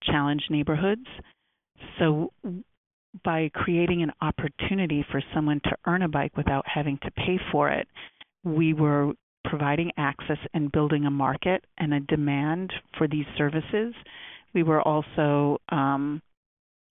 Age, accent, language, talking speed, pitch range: 40-59, American, English, 130 wpm, 145-170 Hz